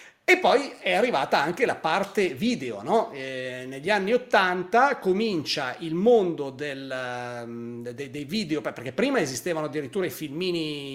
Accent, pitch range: native, 135-205 Hz